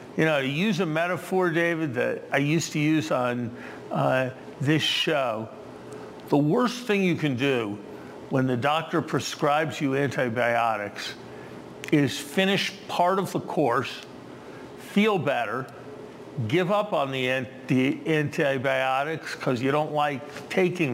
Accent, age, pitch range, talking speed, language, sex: American, 50-69, 130-160 Hz, 130 wpm, English, male